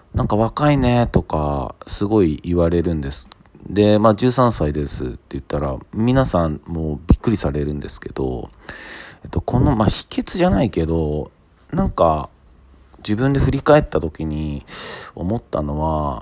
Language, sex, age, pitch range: Japanese, male, 40-59, 75-110 Hz